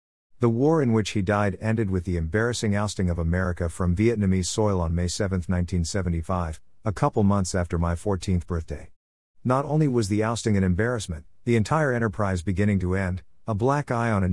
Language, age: English, 50-69